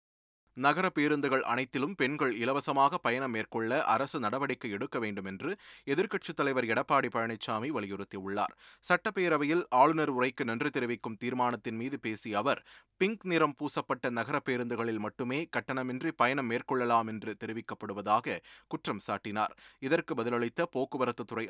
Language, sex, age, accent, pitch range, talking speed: Tamil, male, 30-49, native, 115-150 Hz, 115 wpm